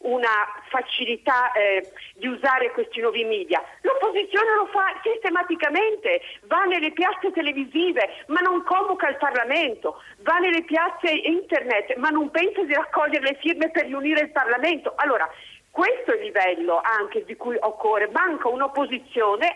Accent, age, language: native, 50-69, Italian